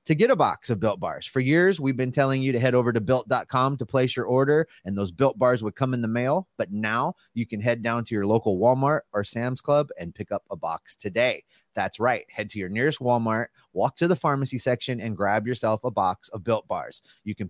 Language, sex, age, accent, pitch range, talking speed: English, male, 30-49, American, 110-145 Hz, 245 wpm